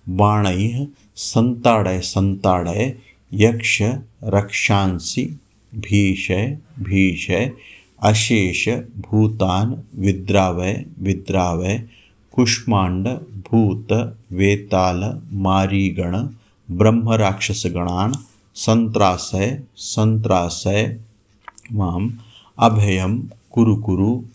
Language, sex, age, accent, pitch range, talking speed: Hindi, male, 50-69, native, 95-115 Hz, 45 wpm